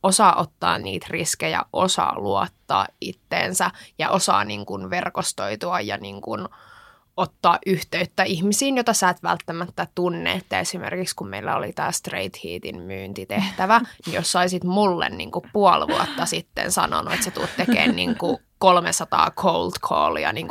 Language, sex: Finnish, female